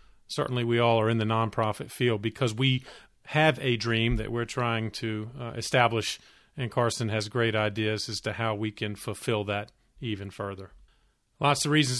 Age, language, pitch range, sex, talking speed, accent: 40-59, English, 115-155 Hz, male, 180 wpm, American